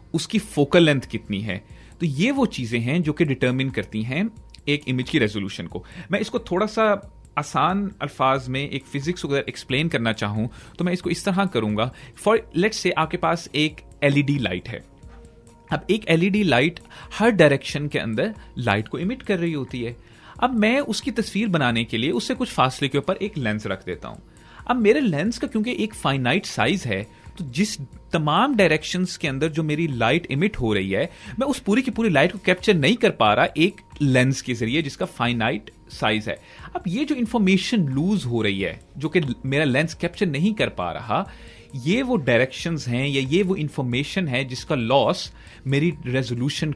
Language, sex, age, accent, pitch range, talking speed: Hindi, male, 30-49, native, 120-190 Hz, 180 wpm